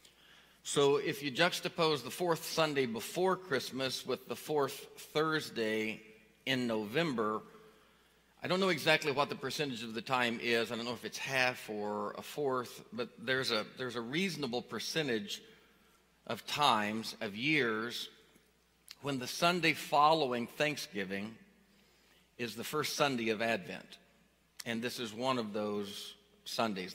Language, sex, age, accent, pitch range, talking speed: English, male, 50-69, American, 125-170 Hz, 140 wpm